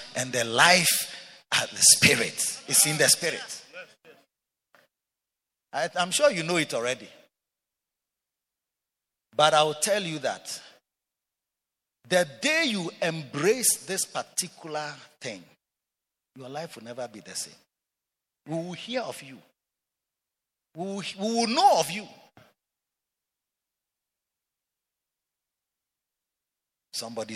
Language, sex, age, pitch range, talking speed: English, male, 50-69, 140-205 Hz, 100 wpm